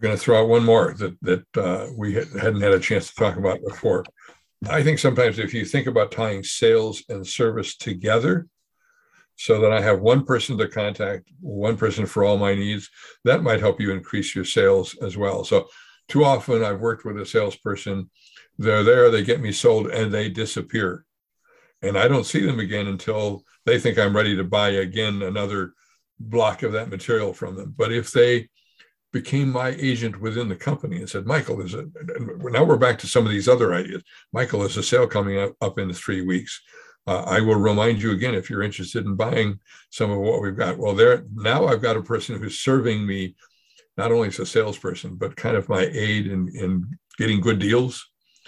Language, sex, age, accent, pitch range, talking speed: English, male, 60-79, American, 100-135 Hz, 205 wpm